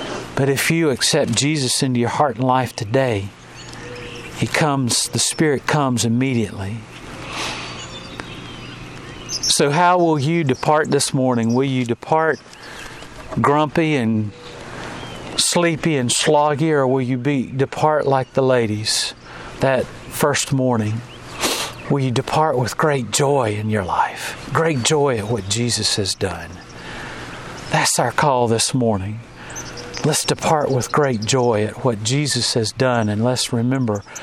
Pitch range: 110-140 Hz